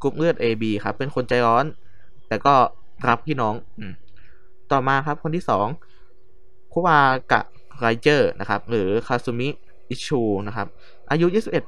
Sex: male